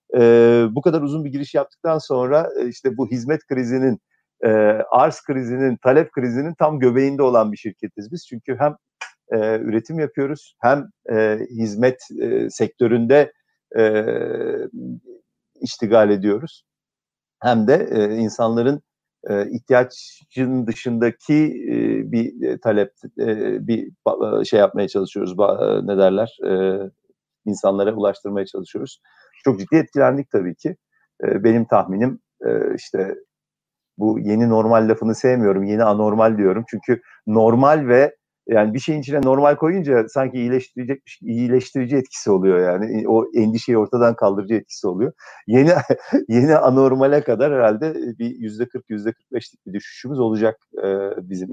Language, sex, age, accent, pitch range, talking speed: Turkish, male, 50-69, native, 110-145 Hz, 130 wpm